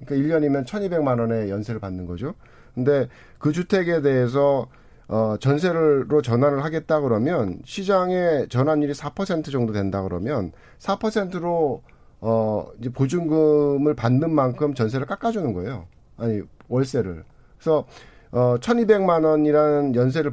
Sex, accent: male, native